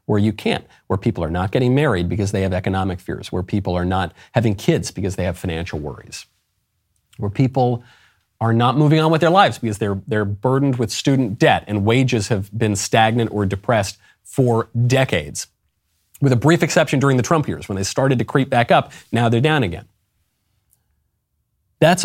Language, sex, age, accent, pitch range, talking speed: English, male, 40-59, American, 100-155 Hz, 190 wpm